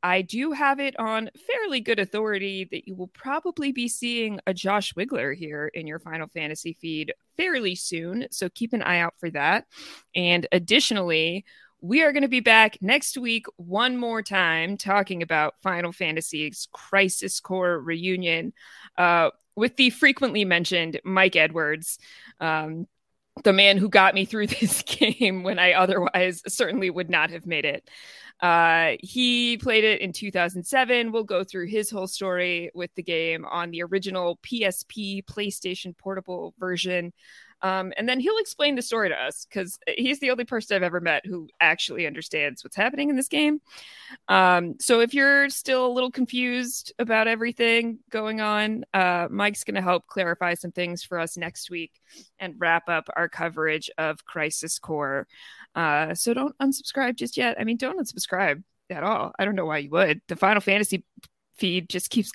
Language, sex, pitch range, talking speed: English, female, 175-235 Hz, 175 wpm